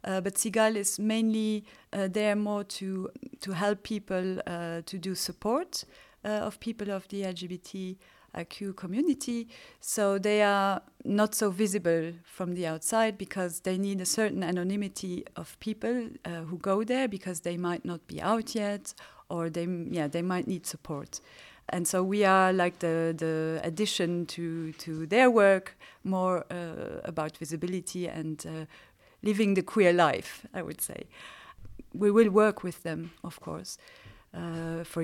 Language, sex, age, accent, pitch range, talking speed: English, female, 40-59, French, 170-205 Hz, 160 wpm